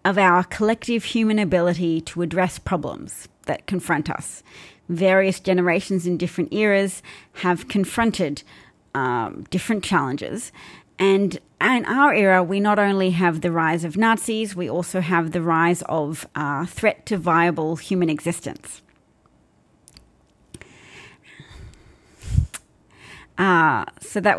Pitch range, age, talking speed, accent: 175-210 Hz, 30-49, 120 wpm, Australian